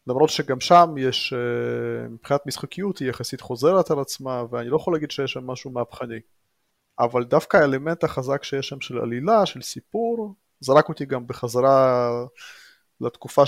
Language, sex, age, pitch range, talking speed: Hebrew, male, 30-49, 120-150 Hz, 150 wpm